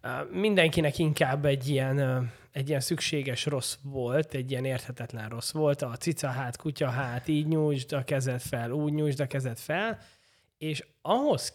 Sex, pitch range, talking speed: male, 125-155 Hz, 160 wpm